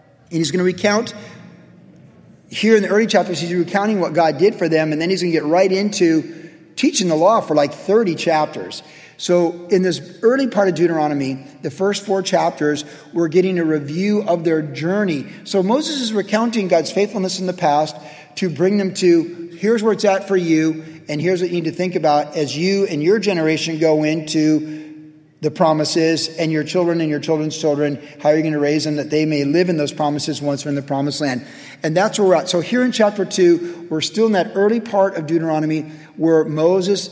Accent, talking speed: American, 215 wpm